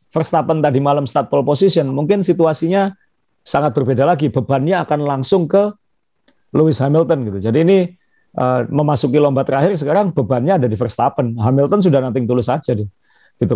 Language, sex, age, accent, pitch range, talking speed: Indonesian, male, 40-59, native, 120-150 Hz, 155 wpm